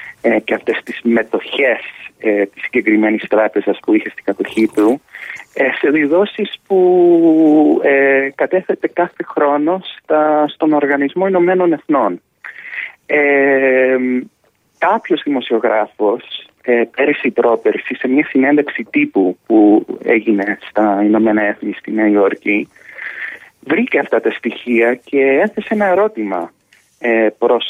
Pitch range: 115-185 Hz